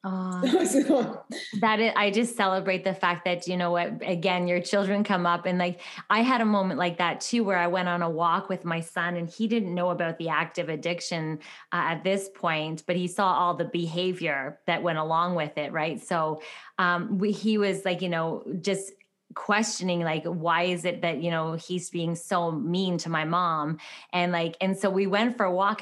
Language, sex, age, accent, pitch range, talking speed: English, female, 20-39, American, 175-205 Hz, 215 wpm